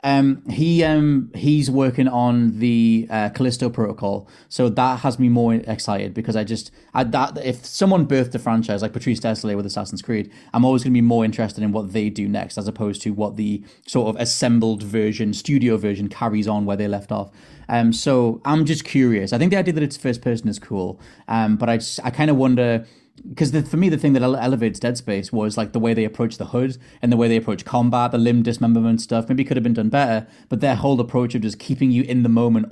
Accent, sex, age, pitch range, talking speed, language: British, male, 30-49, 110-140 Hz, 235 wpm, English